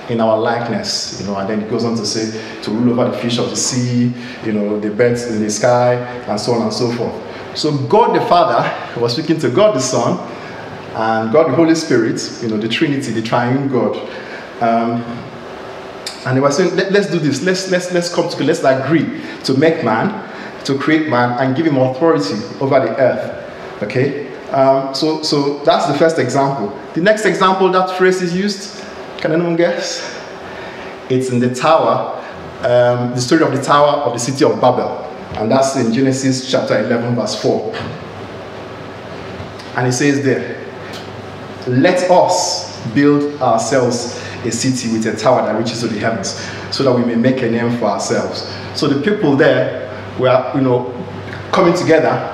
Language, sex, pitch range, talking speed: English, male, 115-145 Hz, 185 wpm